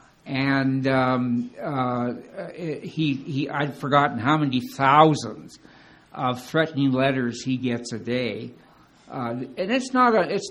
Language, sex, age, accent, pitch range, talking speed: English, male, 60-79, American, 125-150 Hz, 130 wpm